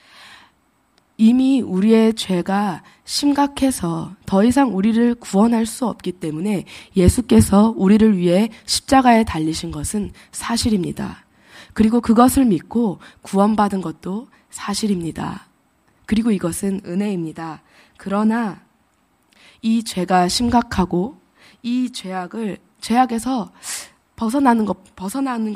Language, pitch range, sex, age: Korean, 185-235 Hz, female, 20-39